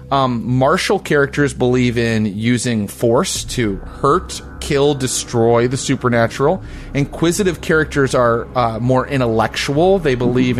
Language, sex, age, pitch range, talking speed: English, male, 30-49, 115-150 Hz, 120 wpm